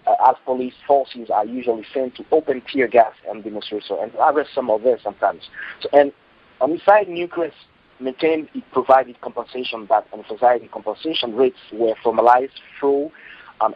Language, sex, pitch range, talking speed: English, male, 110-140 Hz, 180 wpm